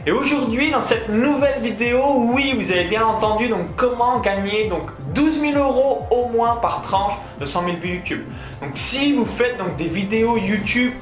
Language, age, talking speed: French, 20-39, 190 wpm